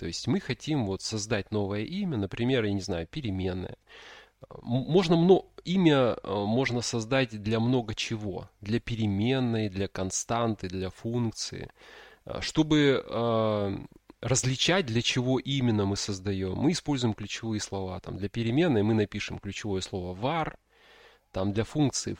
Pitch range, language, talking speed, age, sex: 100-130 Hz, Russian, 125 wpm, 20-39, male